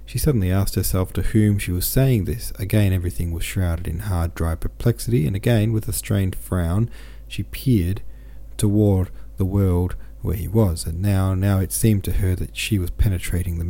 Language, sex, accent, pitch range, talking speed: English, male, Australian, 85-110 Hz, 195 wpm